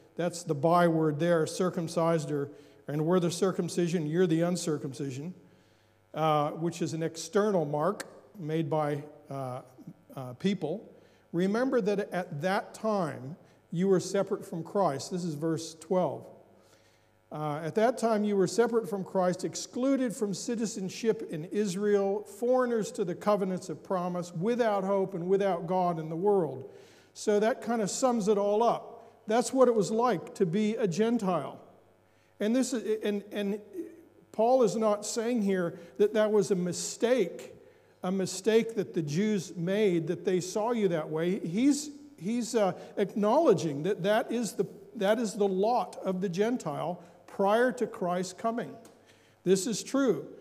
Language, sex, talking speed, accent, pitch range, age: English, male, 155 wpm, American, 170-220 Hz, 50-69